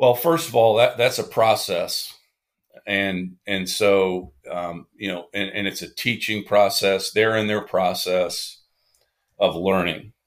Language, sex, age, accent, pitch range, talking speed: English, male, 40-59, American, 90-110 Hz, 150 wpm